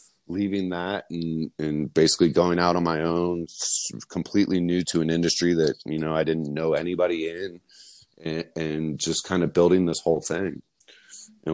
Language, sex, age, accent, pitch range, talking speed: English, male, 30-49, American, 80-90 Hz, 170 wpm